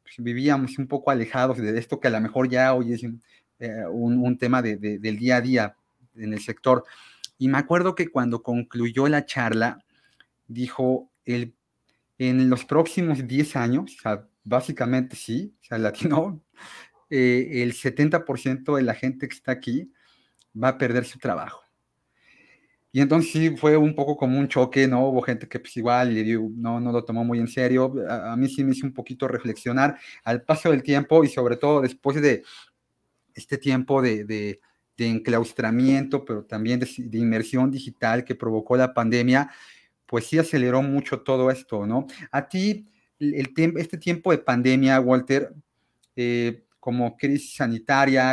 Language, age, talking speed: Spanish, 30-49, 175 wpm